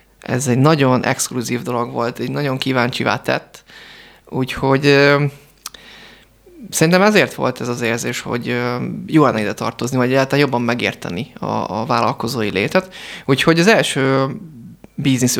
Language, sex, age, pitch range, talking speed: Hungarian, male, 20-39, 120-150 Hz, 135 wpm